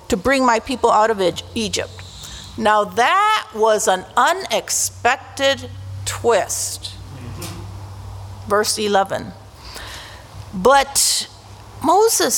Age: 50-69